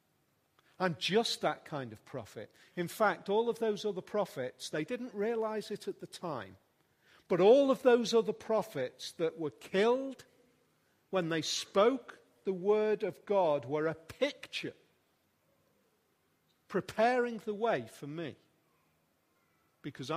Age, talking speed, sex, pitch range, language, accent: 40-59, 135 wpm, male, 140-195 Hz, English, British